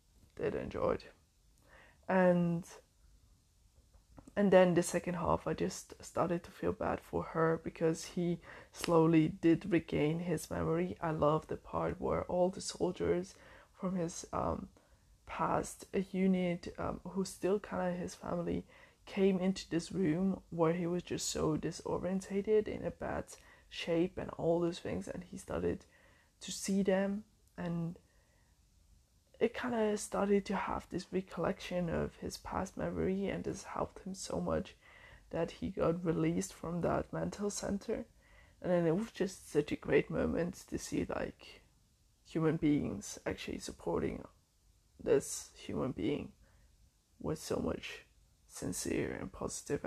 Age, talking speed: 20-39, 140 wpm